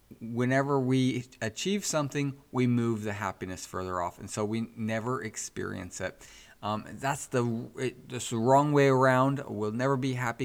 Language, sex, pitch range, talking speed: English, male, 105-130 Hz, 150 wpm